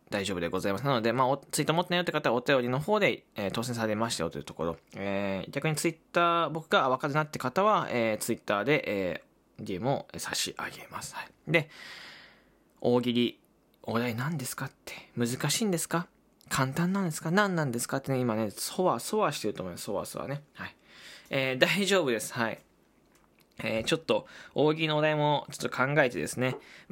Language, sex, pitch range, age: Japanese, male, 130-195 Hz, 20-39